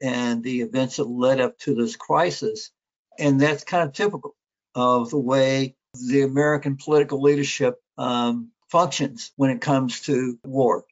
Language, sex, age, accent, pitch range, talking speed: English, male, 60-79, American, 125-145 Hz, 155 wpm